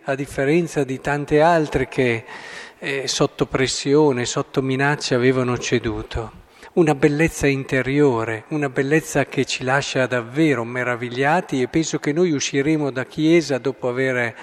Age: 50-69